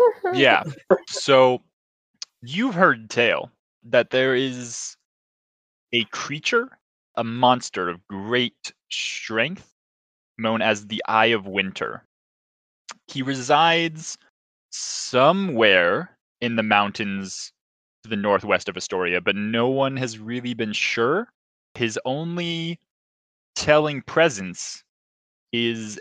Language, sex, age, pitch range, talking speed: English, male, 20-39, 100-125 Hz, 100 wpm